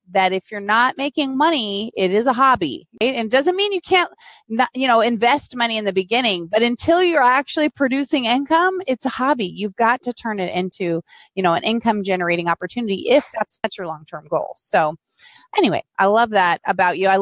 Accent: American